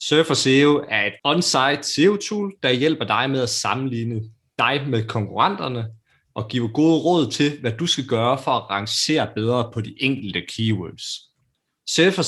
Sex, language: male, Danish